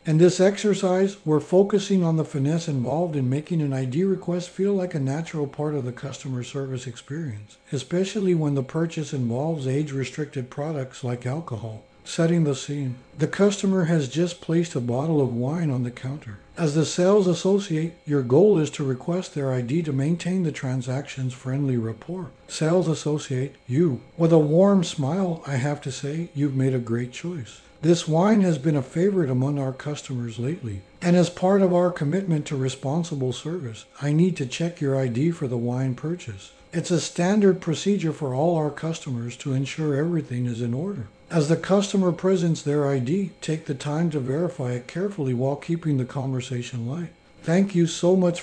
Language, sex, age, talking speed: English, male, 60-79, 180 wpm